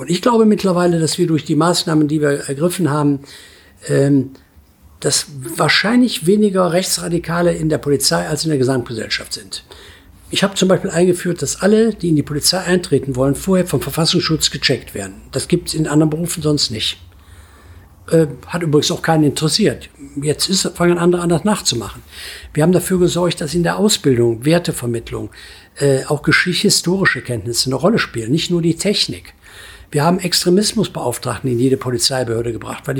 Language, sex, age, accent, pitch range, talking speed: German, male, 60-79, German, 135-180 Hz, 165 wpm